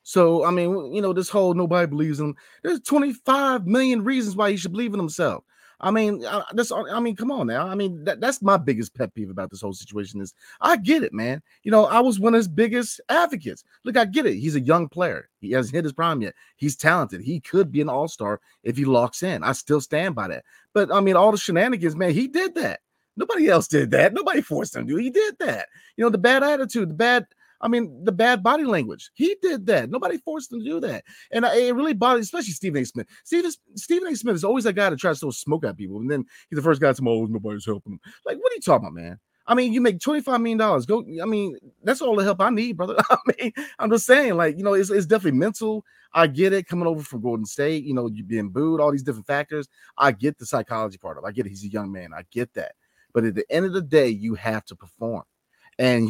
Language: English